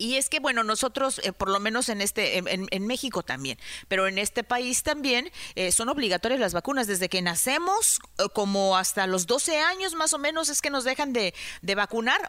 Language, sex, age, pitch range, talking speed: Spanish, female, 40-59, 205-270 Hz, 210 wpm